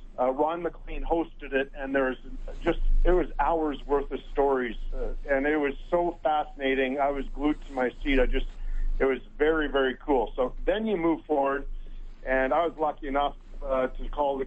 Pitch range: 125-155 Hz